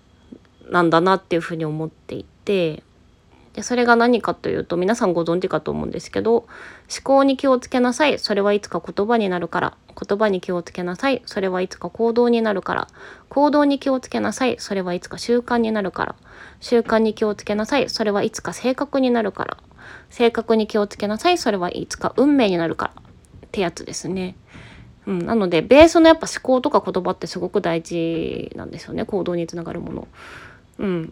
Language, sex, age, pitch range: Japanese, female, 20-39, 175-240 Hz